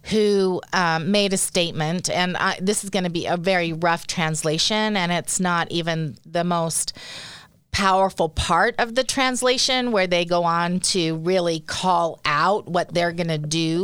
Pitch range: 165-195 Hz